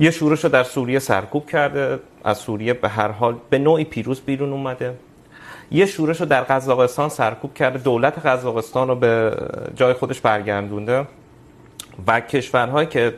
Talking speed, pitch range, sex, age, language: 155 wpm, 120-150 Hz, male, 30-49, Urdu